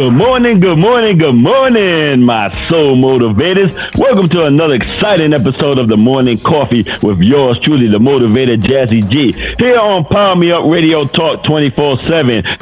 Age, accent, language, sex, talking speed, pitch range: 50-69, American, English, male, 155 wpm, 125-165 Hz